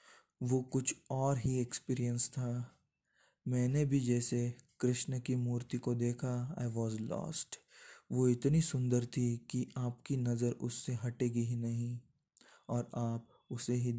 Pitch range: 120-135 Hz